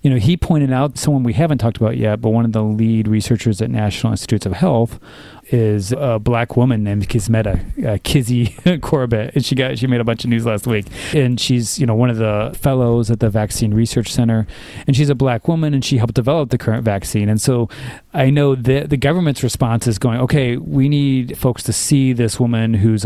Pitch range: 110-140 Hz